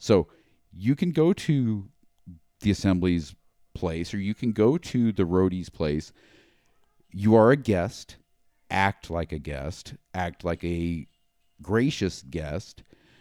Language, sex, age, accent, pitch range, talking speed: English, male, 40-59, American, 85-110 Hz, 130 wpm